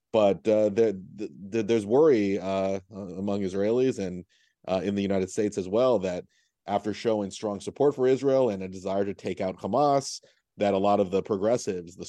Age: 30-49